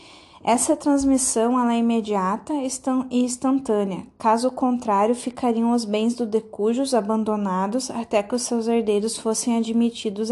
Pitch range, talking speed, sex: 215-250 Hz, 130 wpm, female